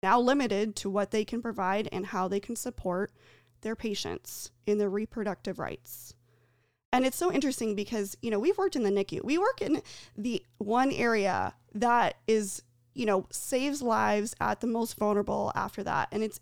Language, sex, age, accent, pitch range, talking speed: English, female, 20-39, American, 200-240 Hz, 185 wpm